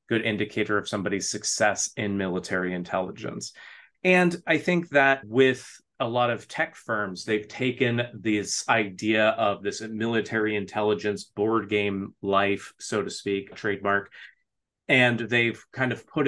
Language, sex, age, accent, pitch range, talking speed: English, male, 30-49, American, 100-120 Hz, 140 wpm